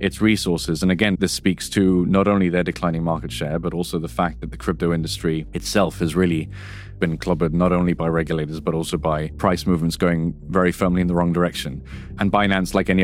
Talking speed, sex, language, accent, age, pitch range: 210 wpm, male, English, British, 20-39, 85-95 Hz